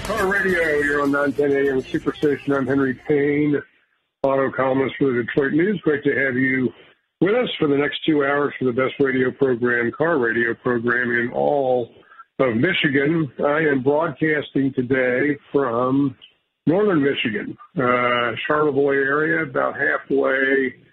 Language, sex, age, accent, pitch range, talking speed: English, male, 50-69, American, 120-145 Hz, 145 wpm